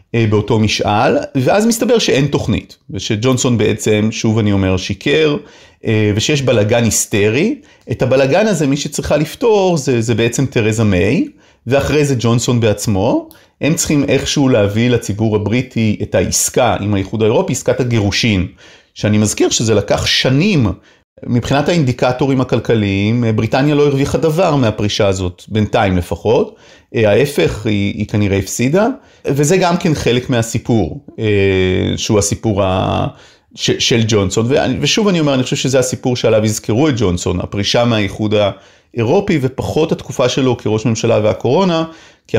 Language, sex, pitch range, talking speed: Hebrew, male, 105-135 Hz, 135 wpm